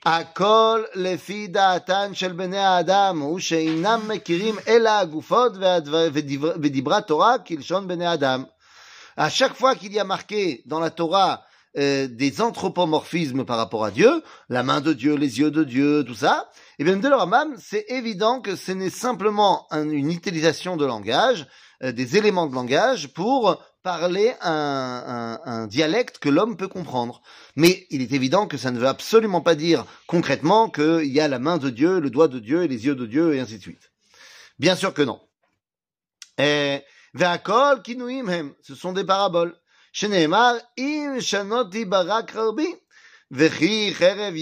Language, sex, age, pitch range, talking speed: French, male, 30-49, 150-215 Hz, 135 wpm